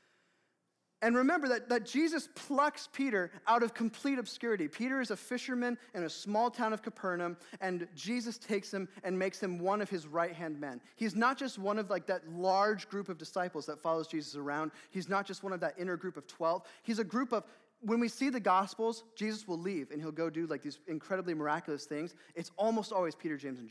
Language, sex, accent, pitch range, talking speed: English, male, American, 145-210 Hz, 215 wpm